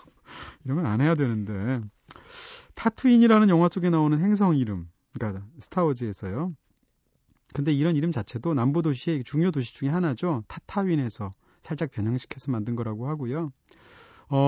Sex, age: male, 30-49